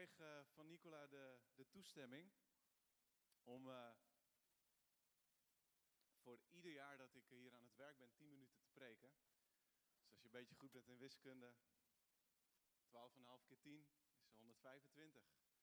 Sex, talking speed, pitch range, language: male, 140 wpm, 125-160 Hz, Dutch